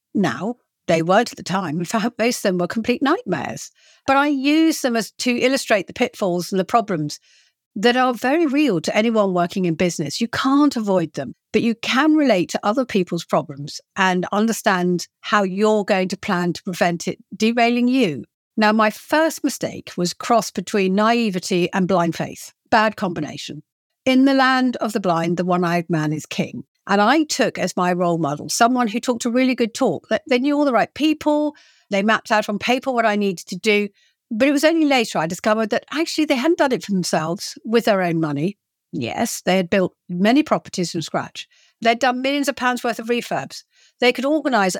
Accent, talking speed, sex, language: British, 200 wpm, female, English